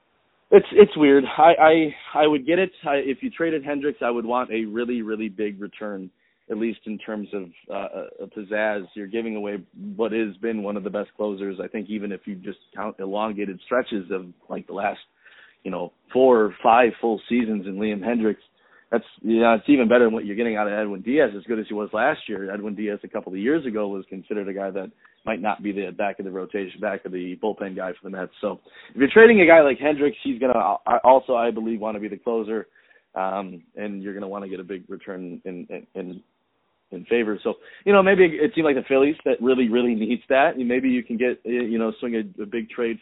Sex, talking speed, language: male, 245 wpm, English